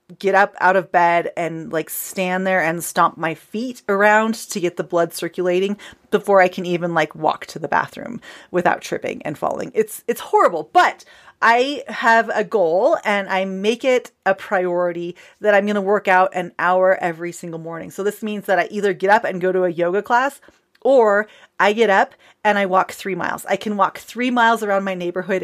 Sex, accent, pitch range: female, American, 180-220 Hz